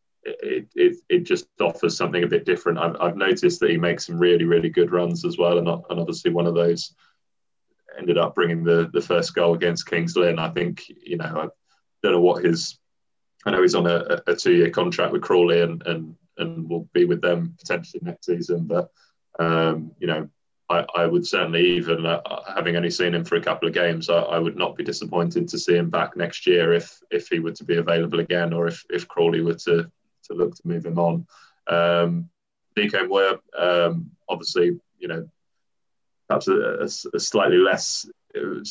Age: 20-39